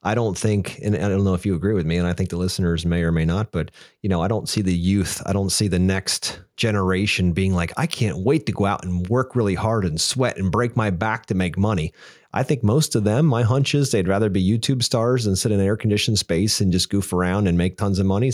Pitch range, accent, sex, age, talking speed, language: 90-110 Hz, American, male, 30-49, 275 wpm, English